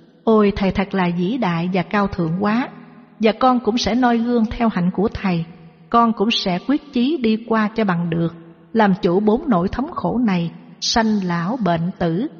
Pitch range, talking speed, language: 185-230 Hz, 200 wpm, Vietnamese